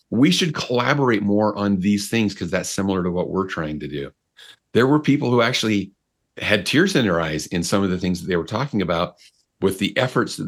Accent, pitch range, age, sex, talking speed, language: American, 90-115 Hz, 40-59, male, 230 wpm, English